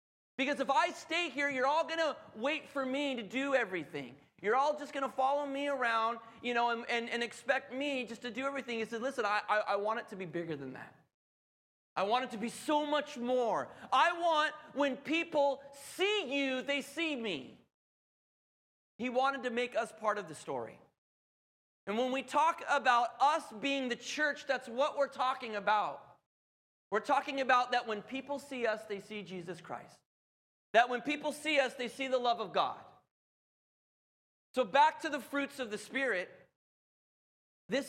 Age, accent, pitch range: 30-49, American, 215-280 Hz